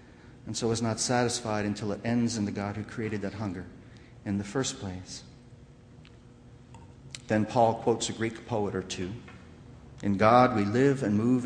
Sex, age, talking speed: male, 50-69, 175 wpm